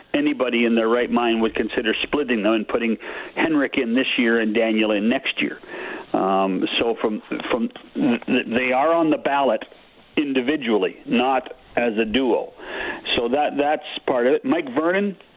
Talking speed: 170 wpm